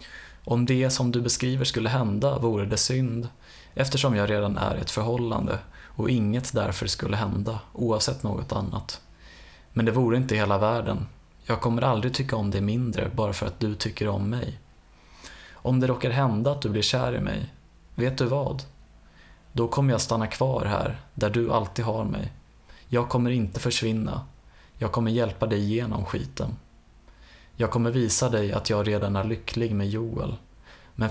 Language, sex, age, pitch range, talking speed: Swedish, male, 20-39, 105-125 Hz, 175 wpm